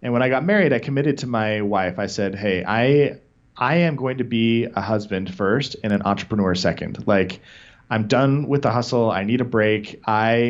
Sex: male